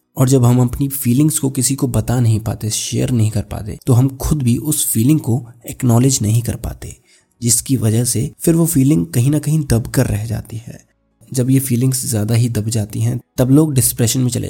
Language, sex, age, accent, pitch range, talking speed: Hindi, male, 20-39, native, 110-130 Hz, 220 wpm